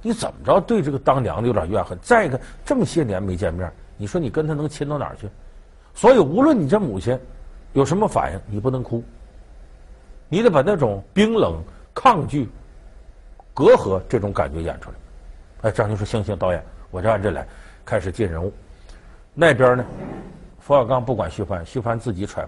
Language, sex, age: Chinese, male, 50-69